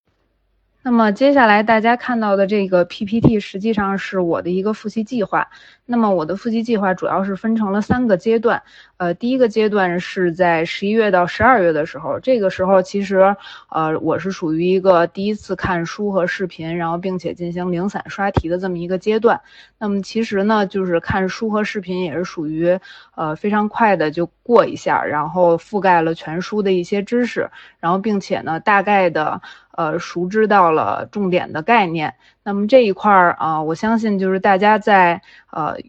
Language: Chinese